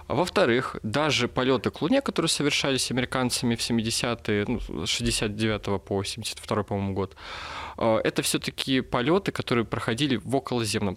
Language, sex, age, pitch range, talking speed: Russian, male, 20-39, 105-130 Hz, 125 wpm